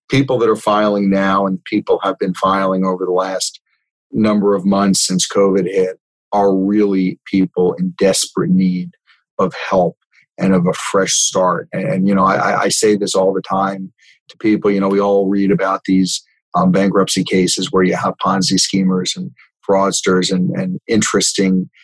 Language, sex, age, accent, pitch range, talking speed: English, male, 40-59, American, 95-100 Hz, 175 wpm